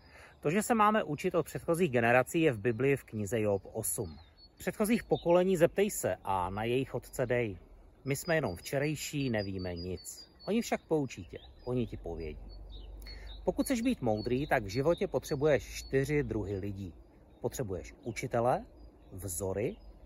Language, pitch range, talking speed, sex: Czech, 105-175 Hz, 155 wpm, male